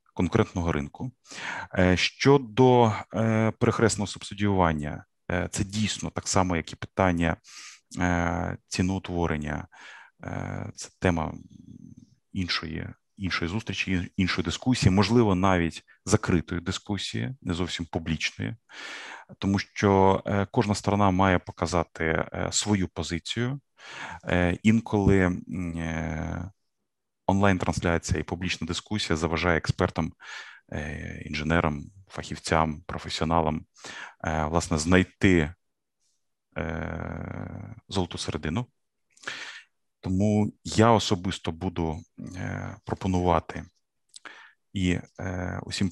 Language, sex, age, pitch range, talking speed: Ukrainian, male, 30-49, 85-100 Hz, 75 wpm